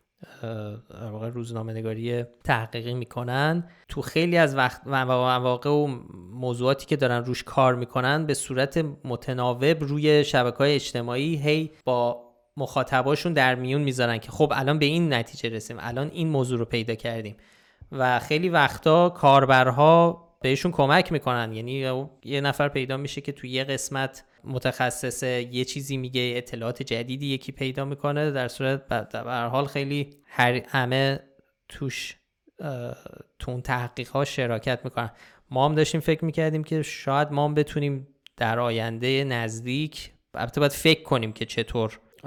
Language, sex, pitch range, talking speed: Persian, male, 120-145 Hz, 135 wpm